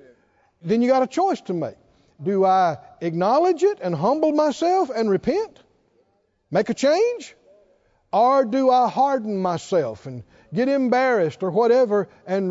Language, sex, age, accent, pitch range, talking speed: English, male, 60-79, American, 180-255 Hz, 145 wpm